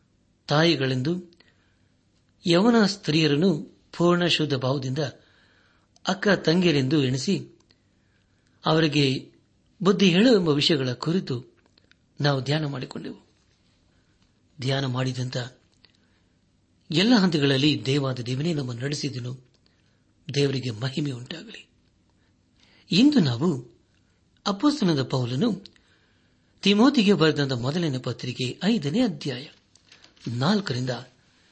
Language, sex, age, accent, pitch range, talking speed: Kannada, male, 60-79, native, 105-160 Hz, 70 wpm